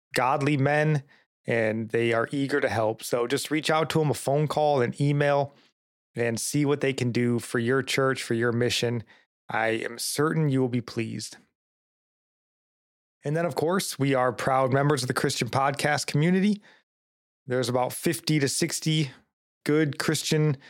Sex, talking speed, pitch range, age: male, 170 wpm, 120-150 Hz, 20-39